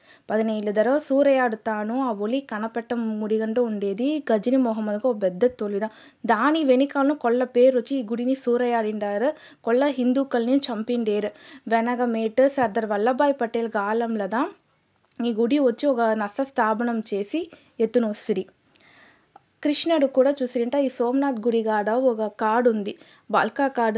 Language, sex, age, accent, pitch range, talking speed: Telugu, female, 20-39, native, 220-270 Hz, 120 wpm